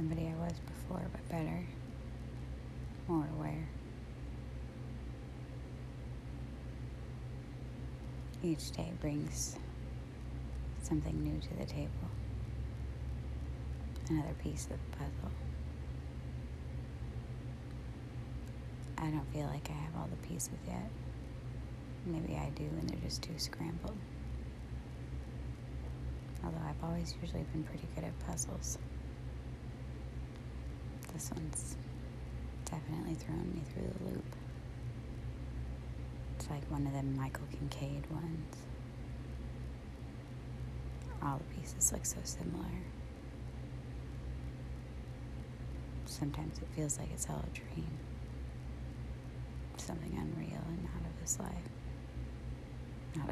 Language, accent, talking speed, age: English, American, 95 wpm, 20-39